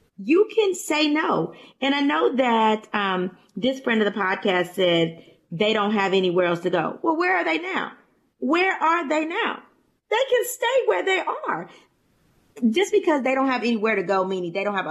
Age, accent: 30-49, American